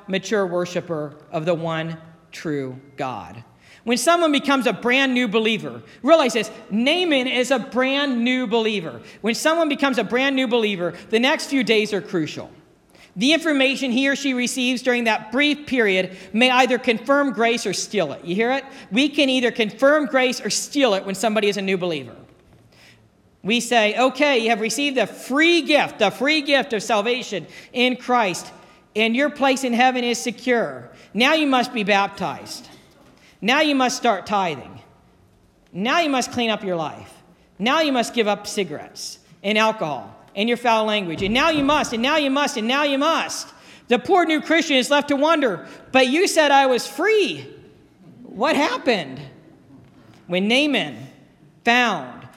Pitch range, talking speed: 205-275 Hz, 175 wpm